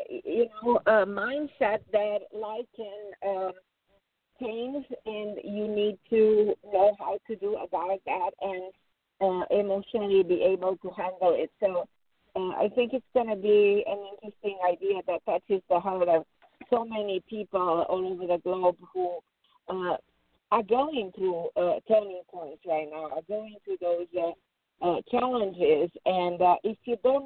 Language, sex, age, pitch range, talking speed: English, female, 50-69, 195-245 Hz, 160 wpm